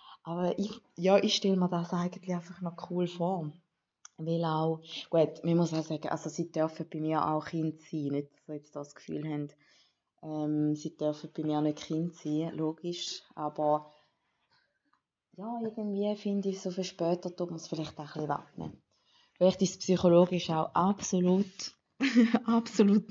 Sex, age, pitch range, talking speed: female, 20-39, 160-195 Hz, 175 wpm